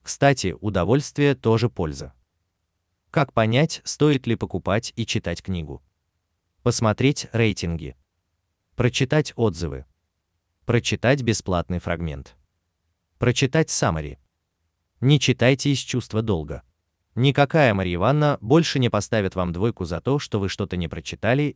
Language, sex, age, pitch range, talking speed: Russian, male, 30-49, 85-130 Hz, 115 wpm